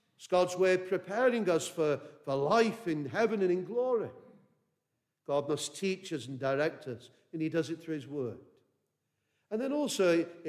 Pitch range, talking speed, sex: 155-210 Hz, 185 wpm, male